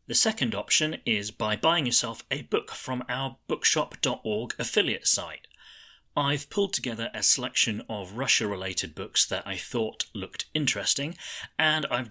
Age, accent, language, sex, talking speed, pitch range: 30-49, British, English, male, 145 wpm, 95-130 Hz